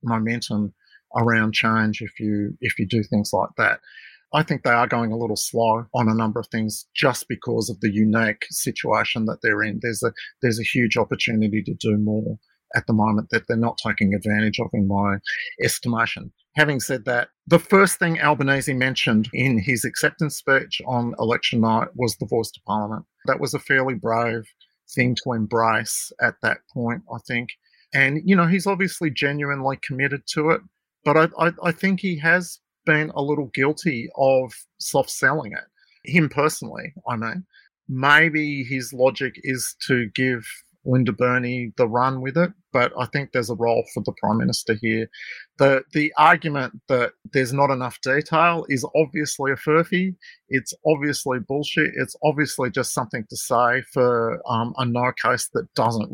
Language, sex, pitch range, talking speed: English, male, 115-145 Hz, 175 wpm